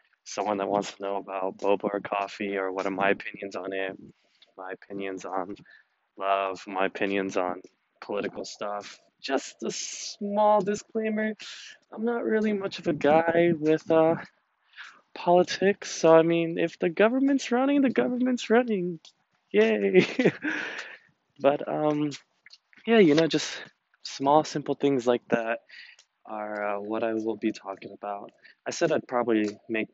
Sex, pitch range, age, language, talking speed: male, 100-165 Hz, 20-39, English, 150 wpm